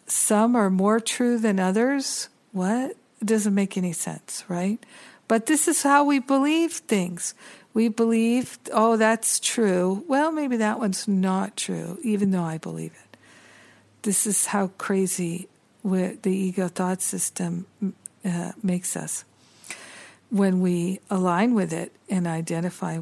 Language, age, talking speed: English, 60-79, 140 wpm